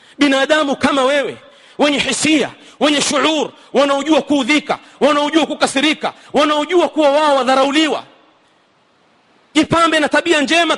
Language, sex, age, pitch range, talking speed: Swahili, male, 40-59, 280-340 Hz, 105 wpm